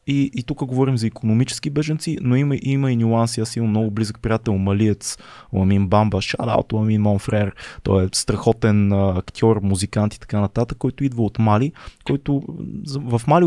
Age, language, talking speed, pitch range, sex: 20-39, Bulgarian, 170 wpm, 110-140 Hz, male